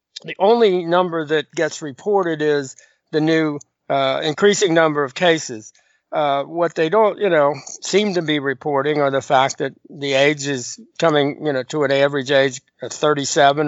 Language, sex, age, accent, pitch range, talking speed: English, male, 50-69, American, 140-170 Hz, 175 wpm